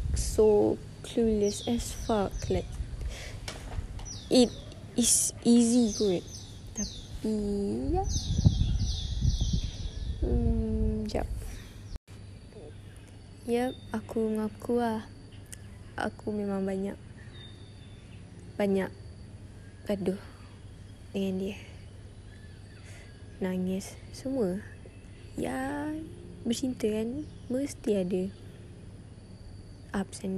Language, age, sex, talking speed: Malay, 20-39, female, 70 wpm